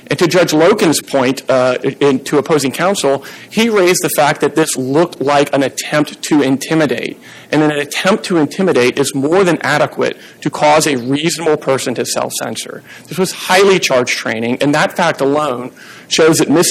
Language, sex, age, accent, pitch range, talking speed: English, male, 40-59, American, 135-165 Hz, 175 wpm